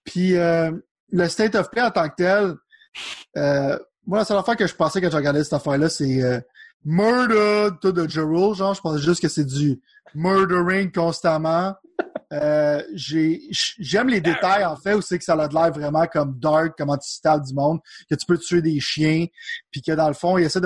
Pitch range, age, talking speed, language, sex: 150-180 Hz, 30-49, 200 wpm, French, male